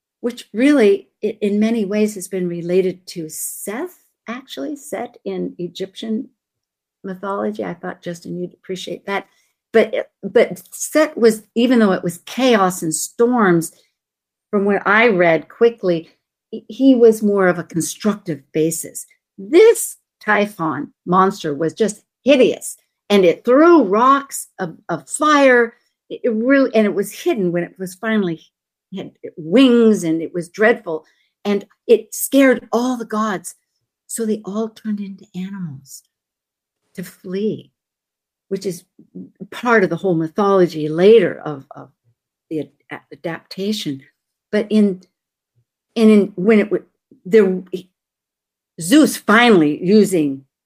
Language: English